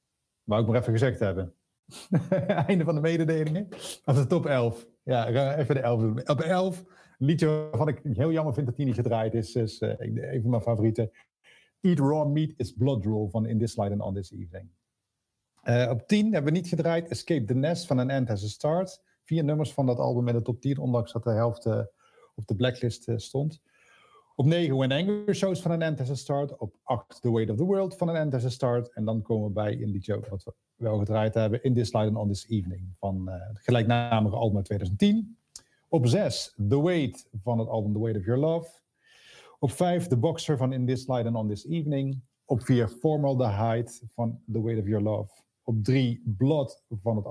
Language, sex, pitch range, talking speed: Dutch, male, 110-150 Hz, 230 wpm